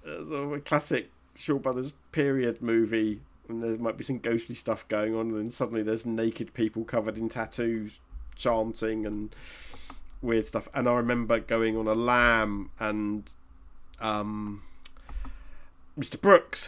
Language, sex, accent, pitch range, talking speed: English, male, British, 105-145 Hz, 140 wpm